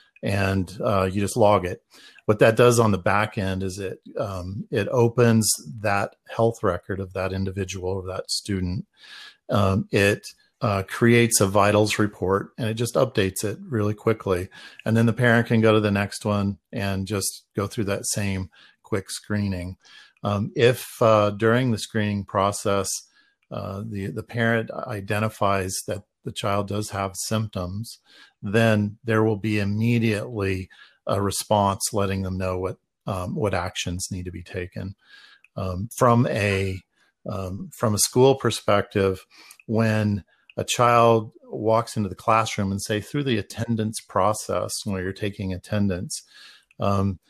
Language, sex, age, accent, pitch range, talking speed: English, male, 50-69, American, 95-115 Hz, 150 wpm